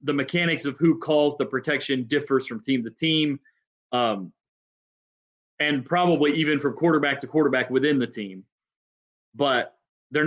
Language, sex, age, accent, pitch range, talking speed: English, male, 30-49, American, 130-165 Hz, 145 wpm